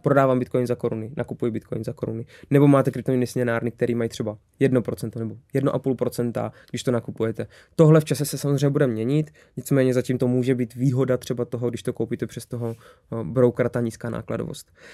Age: 20-39